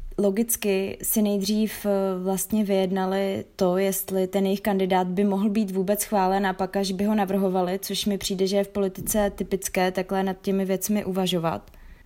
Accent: native